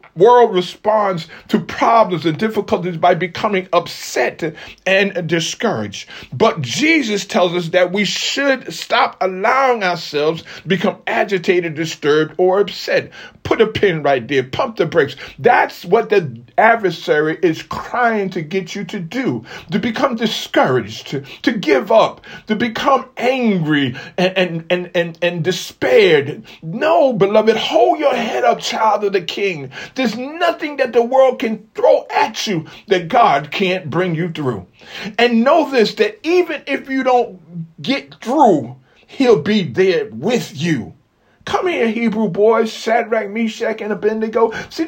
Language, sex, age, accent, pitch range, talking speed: English, male, 40-59, American, 180-230 Hz, 150 wpm